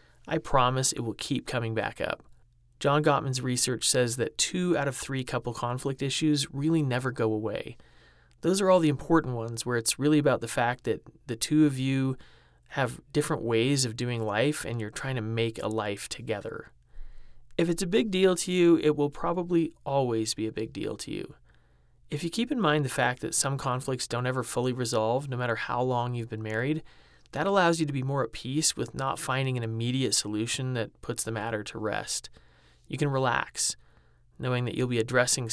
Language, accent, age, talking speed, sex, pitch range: English, American, 30-49, 205 wpm, male, 115-150 Hz